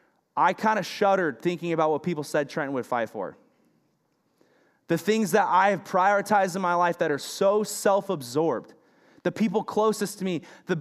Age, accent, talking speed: 20-39, American, 180 wpm